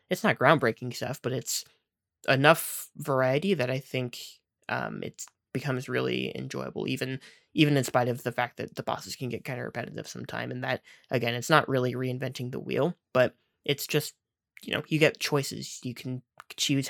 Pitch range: 125-140 Hz